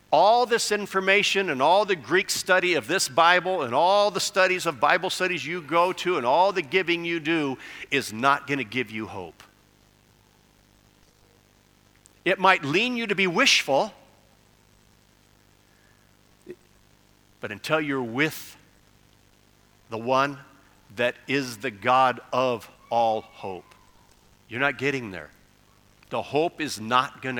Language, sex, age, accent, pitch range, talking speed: English, male, 50-69, American, 110-170 Hz, 140 wpm